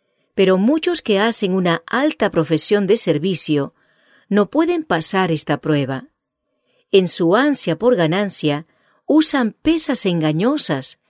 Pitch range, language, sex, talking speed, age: 160-230 Hz, English, female, 120 wpm, 50-69